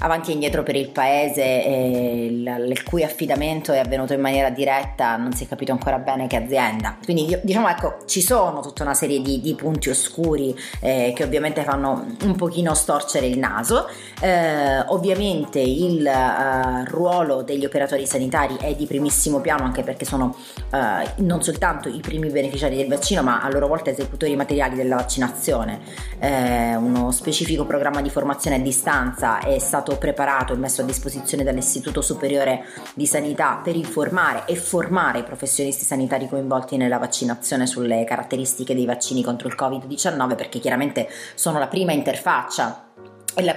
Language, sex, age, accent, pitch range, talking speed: Italian, female, 30-49, native, 130-155 Hz, 165 wpm